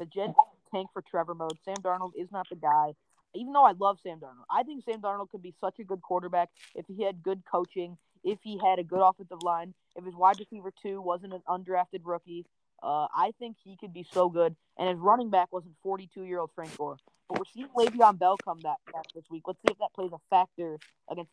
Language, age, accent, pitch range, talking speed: English, 20-39, American, 160-190 Hz, 235 wpm